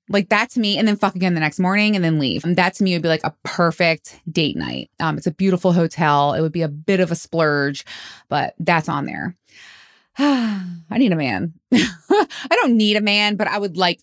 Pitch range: 160-200 Hz